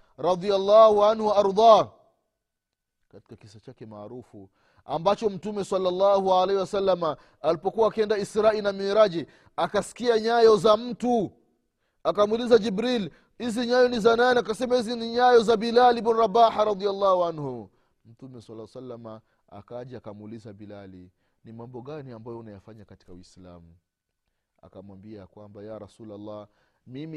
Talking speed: 120 wpm